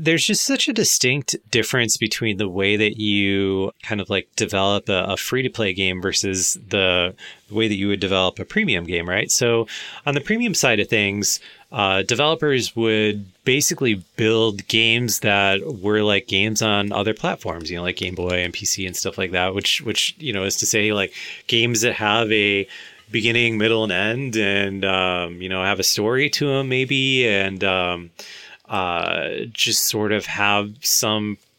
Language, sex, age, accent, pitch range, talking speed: English, male, 30-49, American, 95-120 Hz, 185 wpm